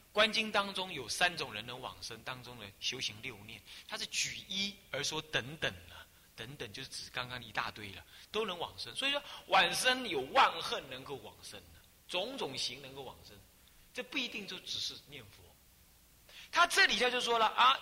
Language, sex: Chinese, male